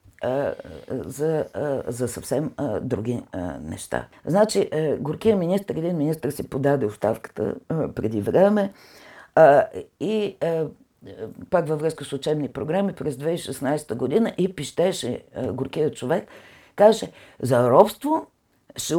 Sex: female